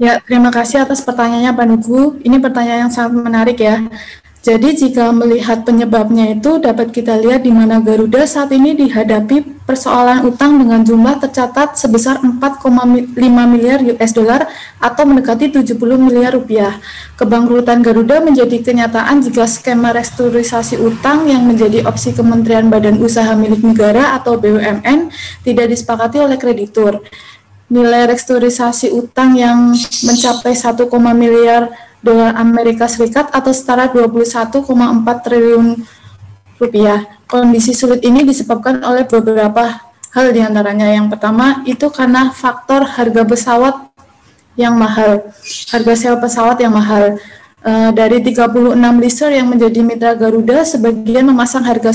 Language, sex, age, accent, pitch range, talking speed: Indonesian, female, 20-39, native, 230-250 Hz, 130 wpm